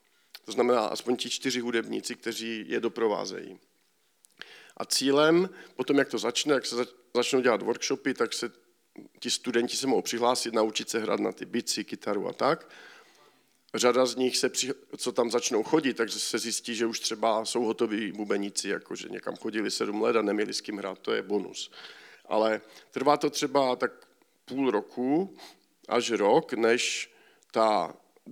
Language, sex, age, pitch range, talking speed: Czech, male, 50-69, 115-130 Hz, 165 wpm